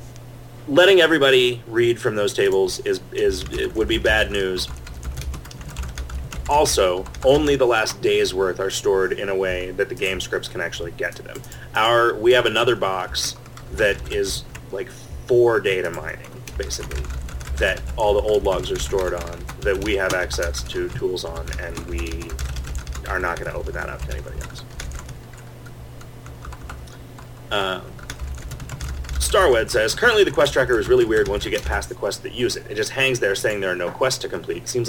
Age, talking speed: 30-49, 175 wpm